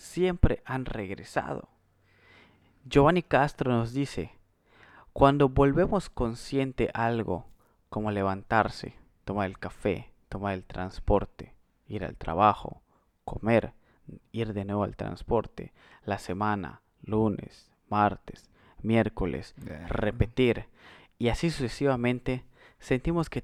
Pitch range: 105-140 Hz